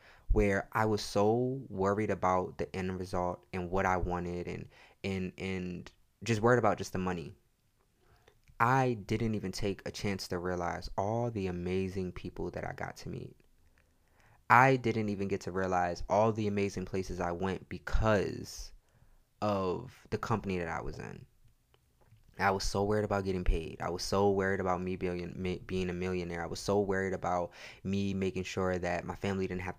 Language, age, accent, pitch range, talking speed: English, 20-39, American, 90-105 Hz, 180 wpm